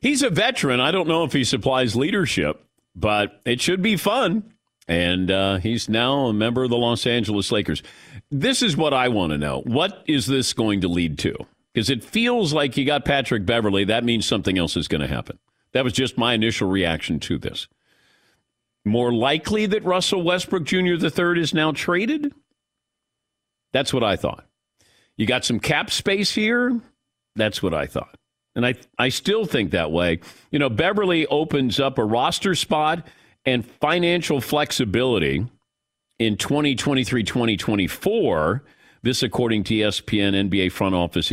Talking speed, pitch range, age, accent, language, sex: 165 wpm, 110-165 Hz, 50-69, American, English, male